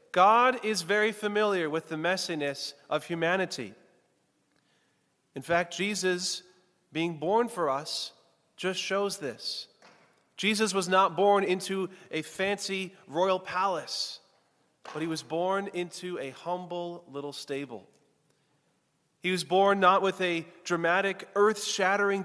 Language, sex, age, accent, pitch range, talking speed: English, male, 30-49, American, 165-210 Hz, 125 wpm